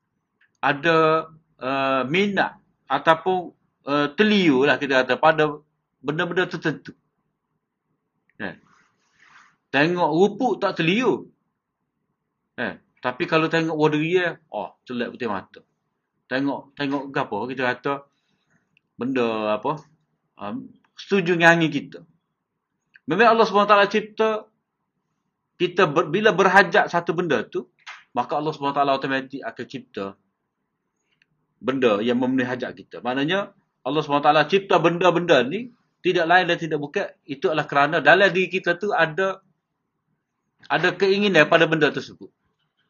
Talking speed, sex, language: 115 wpm, male, Malay